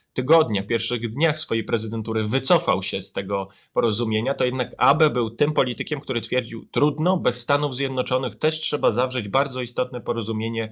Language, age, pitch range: Polish, 30-49, 115-145 Hz